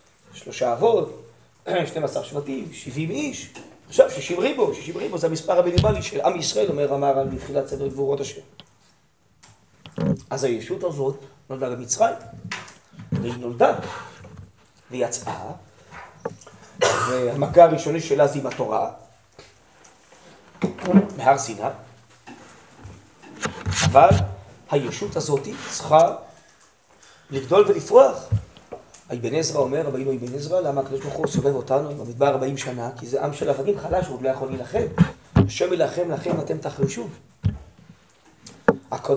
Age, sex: 30-49, male